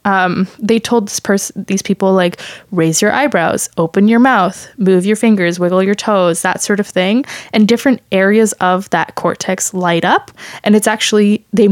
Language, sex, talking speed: English, female, 185 wpm